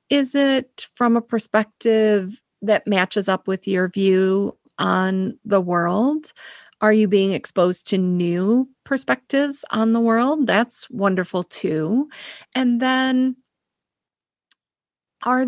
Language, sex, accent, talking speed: English, female, American, 115 wpm